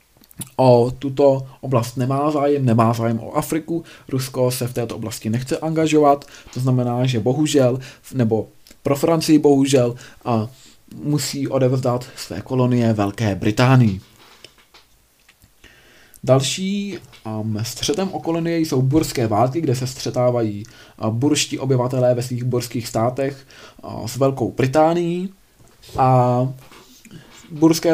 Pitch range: 120-145 Hz